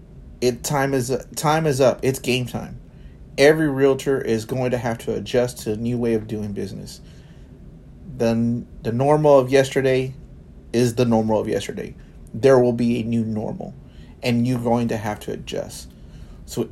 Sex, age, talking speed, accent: male, 30-49, 170 wpm, American